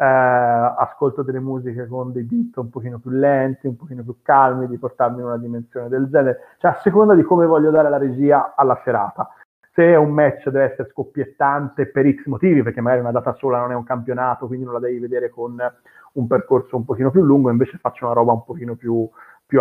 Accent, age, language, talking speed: native, 40-59, Italian, 215 wpm